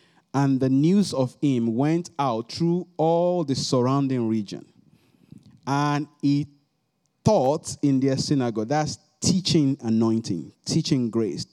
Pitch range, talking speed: 125-155 Hz, 120 wpm